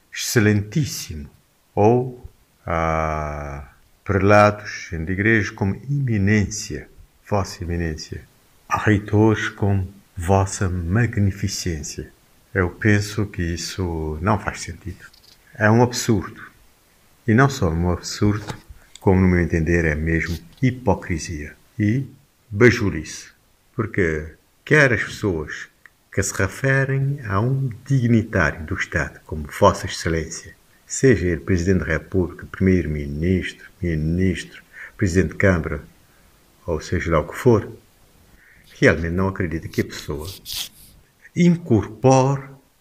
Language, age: Portuguese, 50-69